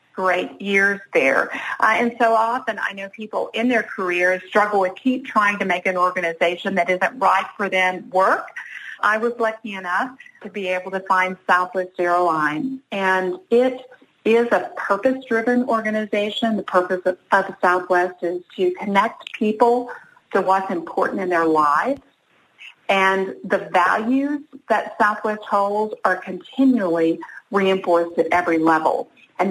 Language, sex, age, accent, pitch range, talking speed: English, female, 50-69, American, 180-230 Hz, 145 wpm